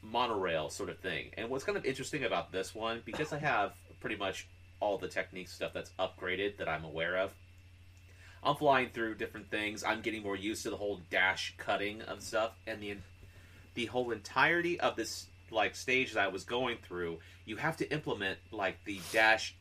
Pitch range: 90-110 Hz